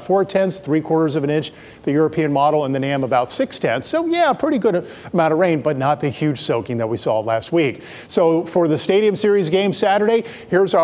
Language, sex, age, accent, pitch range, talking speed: English, male, 50-69, American, 145-180 Hz, 225 wpm